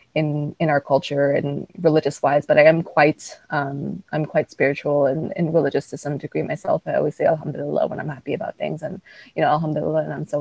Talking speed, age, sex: 220 wpm, 20-39, female